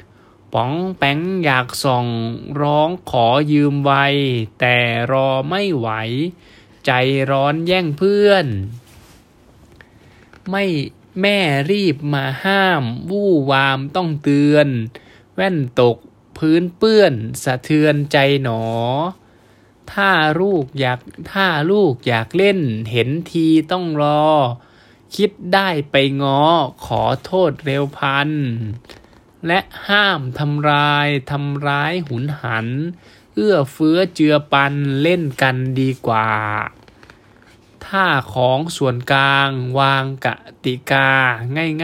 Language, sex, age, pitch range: Thai, male, 20-39, 125-160 Hz